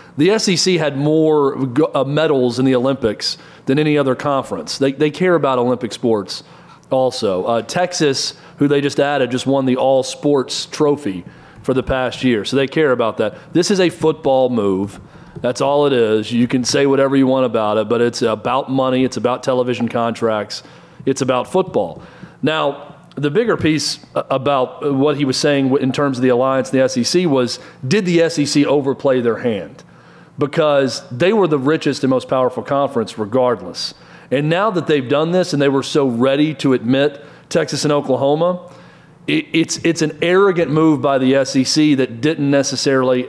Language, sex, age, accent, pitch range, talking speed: English, male, 40-59, American, 130-155 Hz, 180 wpm